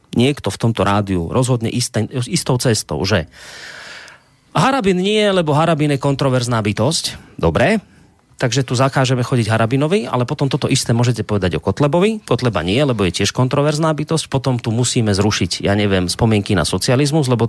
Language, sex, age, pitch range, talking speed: Slovak, male, 30-49, 110-150 Hz, 160 wpm